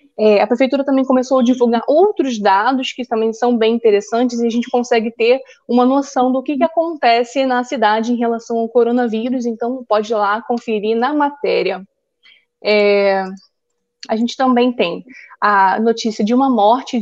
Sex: female